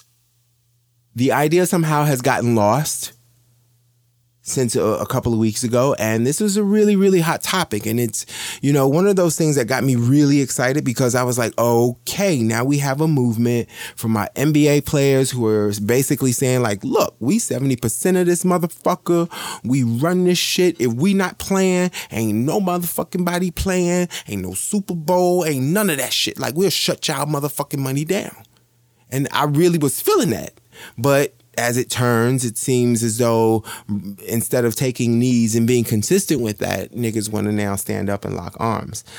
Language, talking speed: English, 185 wpm